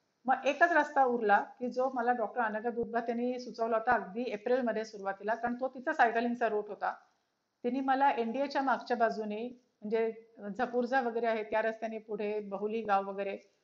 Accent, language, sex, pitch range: native, Marathi, female, 220-255 Hz